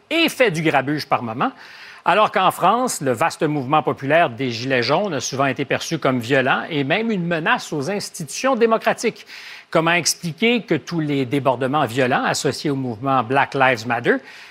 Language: French